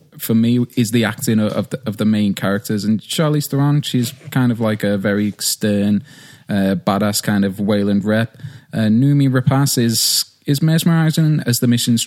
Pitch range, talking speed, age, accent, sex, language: 110-135 Hz, 180 wpm, 20-39, British, male, English